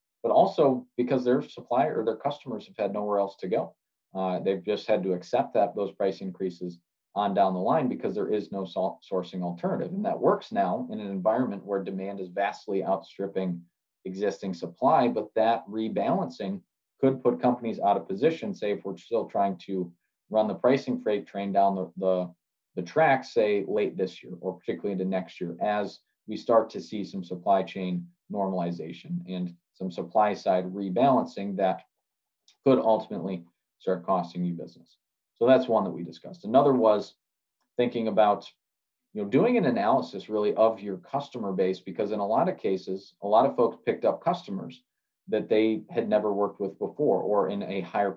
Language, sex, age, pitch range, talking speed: English, male, 40-59, 95-110 Hz, 185 wpm